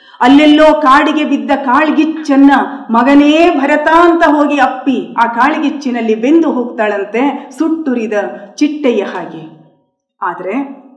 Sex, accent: female, native